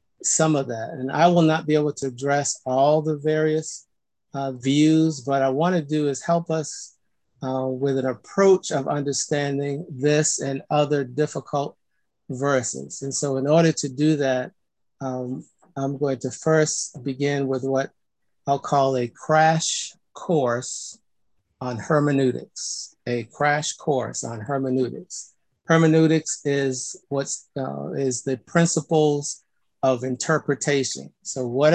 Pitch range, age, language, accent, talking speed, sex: 130-155 Hz, 50-69, English, American, 140 wpm, male